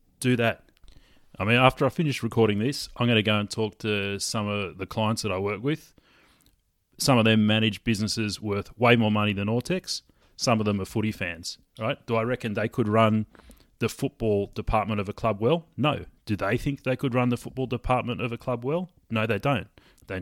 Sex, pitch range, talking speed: male, 100-125 Hz, 220 wpm